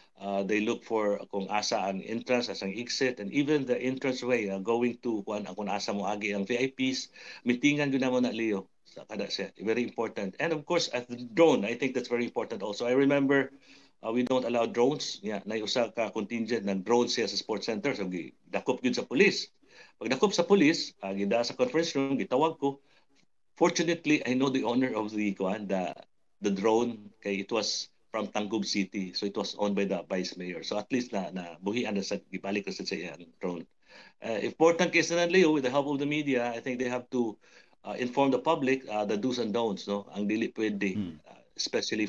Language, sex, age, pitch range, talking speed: Filipino, male, 50-69, 105-135 Hz, 190 wpm